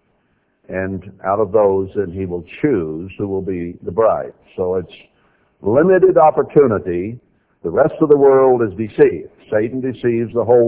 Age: 60-79